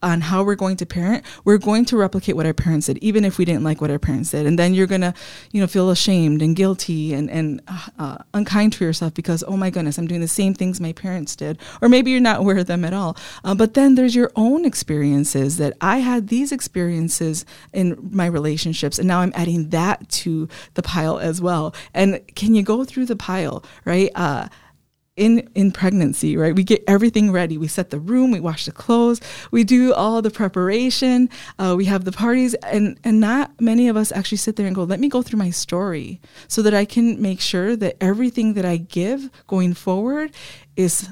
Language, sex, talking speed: English, female, 220 wpm